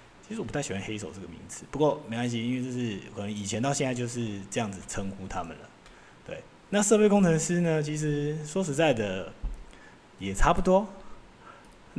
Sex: male